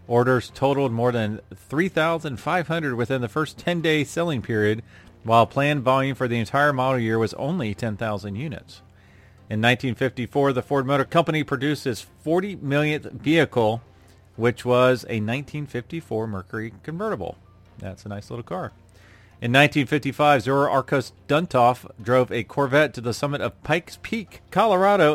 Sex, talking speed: male, 145 wpm